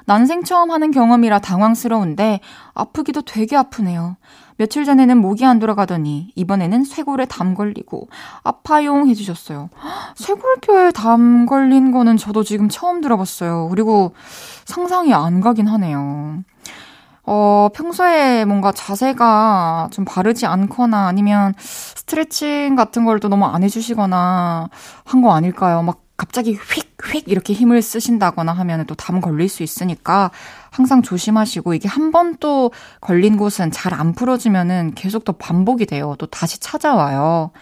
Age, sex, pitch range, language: 20-39, female, 175-245 Hz, Korean